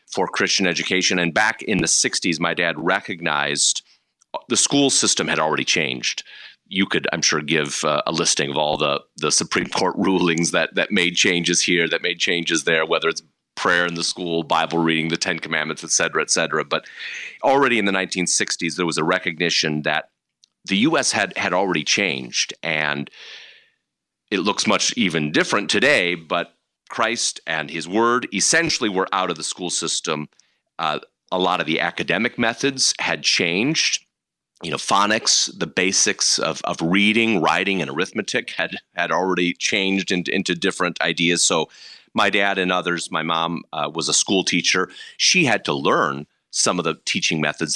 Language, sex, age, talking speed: English, male, 30-49, 175 wpm